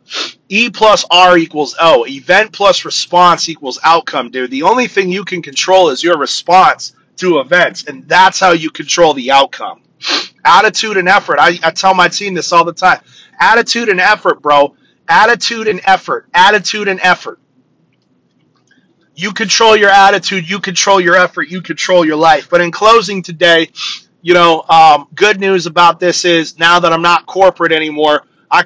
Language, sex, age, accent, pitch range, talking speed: English, male, 30-49, American, 160-195 Hz, 170 wpm